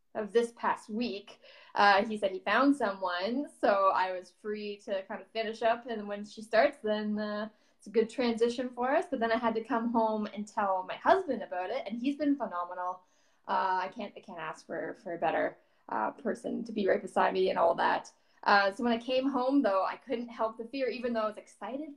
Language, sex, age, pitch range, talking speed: English, female, 10-29, 210-265 Hz, 230 wpm